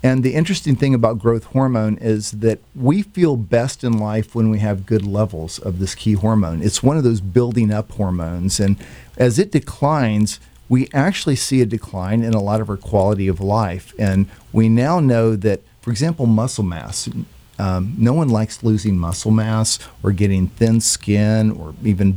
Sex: male